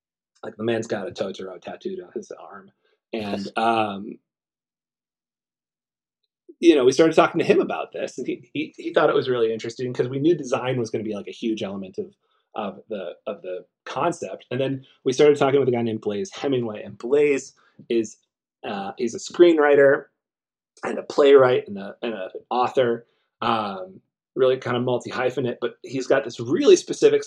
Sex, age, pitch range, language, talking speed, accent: male, 30-49, 110-145 Hz, English, 190 wpm, American